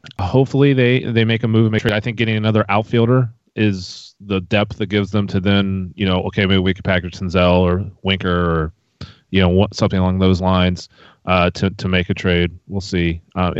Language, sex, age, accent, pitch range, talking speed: English, male, 30-49, American, 90-115 Hz, 210 wpm